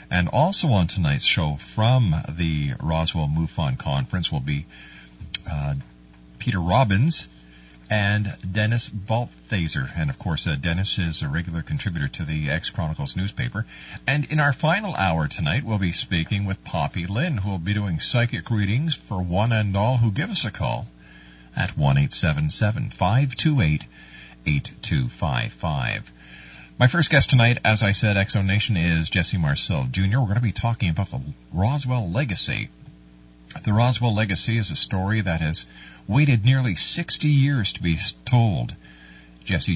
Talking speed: 150 wpm